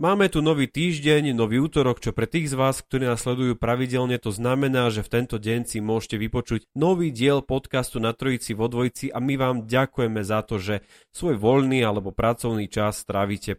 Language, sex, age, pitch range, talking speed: Slovak, male, 30-49, 105-125 Hz, 195 wpm